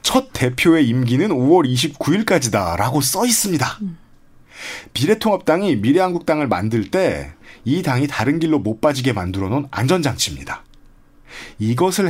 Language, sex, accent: Korean, male, native